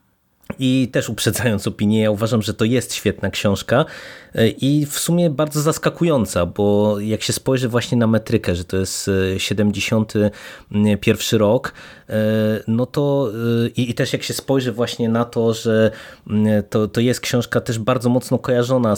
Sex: male